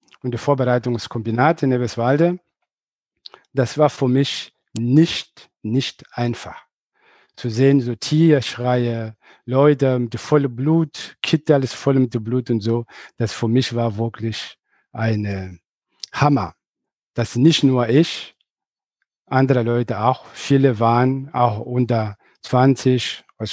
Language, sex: German, male